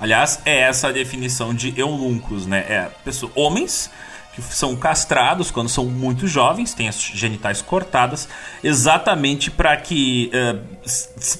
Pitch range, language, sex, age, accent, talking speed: 125-185 Hz, Portuguese, male, 40-59, Brazilian, 140 wpm